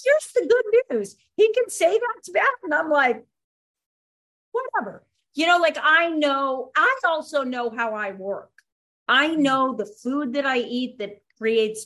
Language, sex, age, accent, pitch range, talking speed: English, female, 40-59, American, 205-280 Hz, 165 wpm